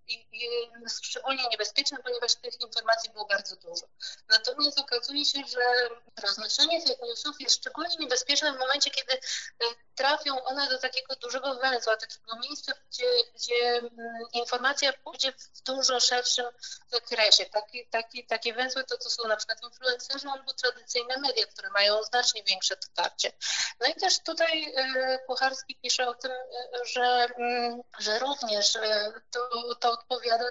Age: 30-49